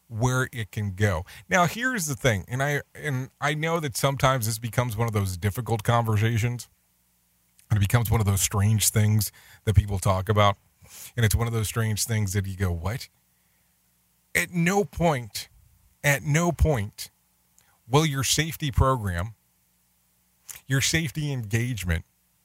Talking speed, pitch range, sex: 155 wpm, 95-135 Hz, male